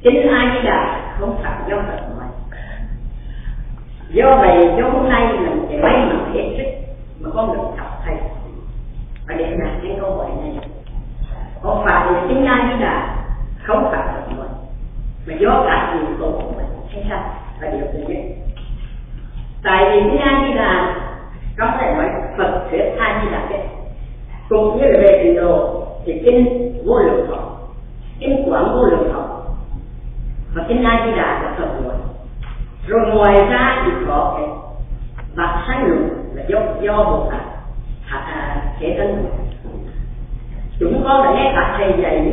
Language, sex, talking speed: Vietnamese, female, 160 wpm